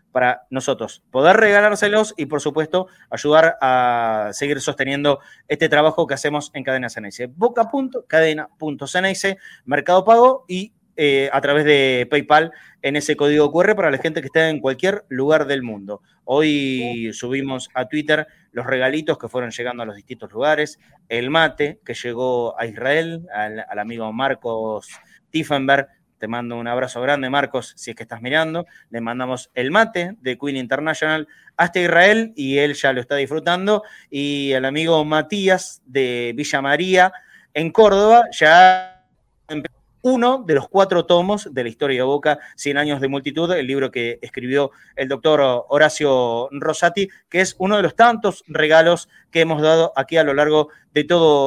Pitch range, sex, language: 130-175 Hz, male, Spanish